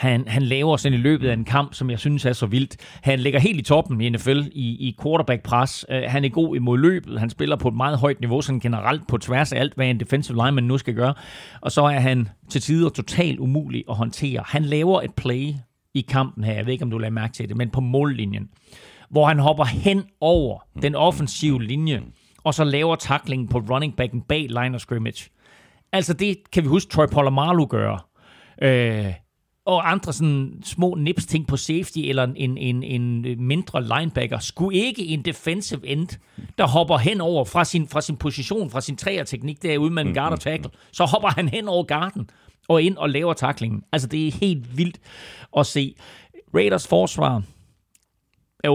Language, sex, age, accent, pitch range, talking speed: Danish, male, 30-49, native, 125-155 Hz, 200 wpm